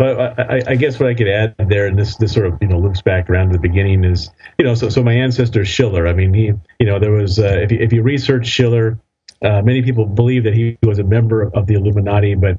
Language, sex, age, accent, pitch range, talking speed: English, male, 40-59, American, 100-115 Hz, 275 wpm